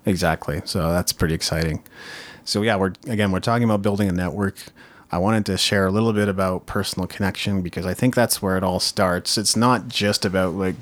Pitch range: 95-110 Hz